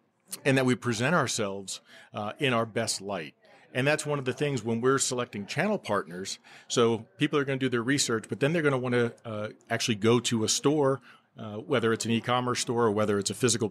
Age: 40-59